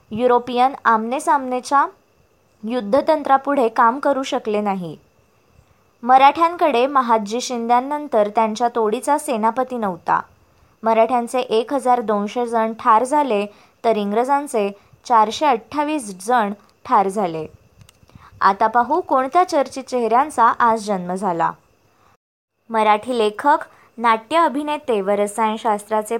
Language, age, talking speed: Marathi, 20-39, 70 wpm